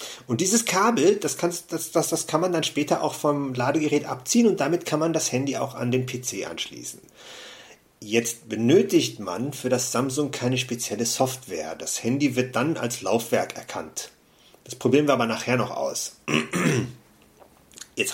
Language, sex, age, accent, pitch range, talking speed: German, male, 40-59, German, 130-175 Hz, 170 wpm